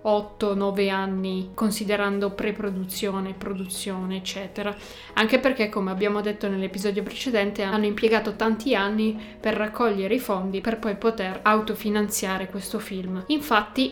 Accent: native